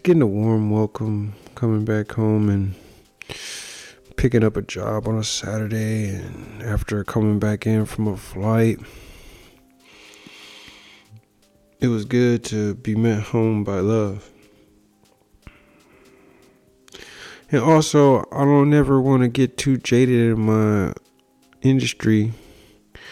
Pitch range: 105-120 Hz